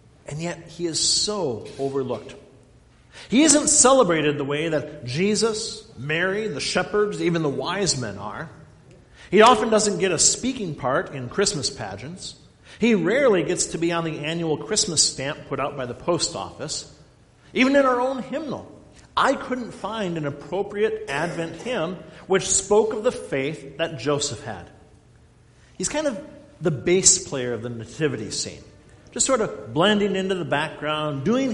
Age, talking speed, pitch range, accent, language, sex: 50-69, 160 wpm, 135-200 Hz, American, English, male